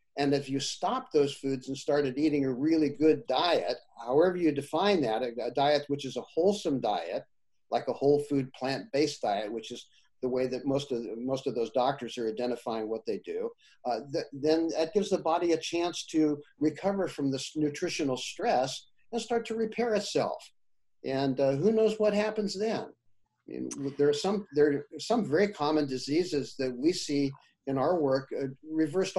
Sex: male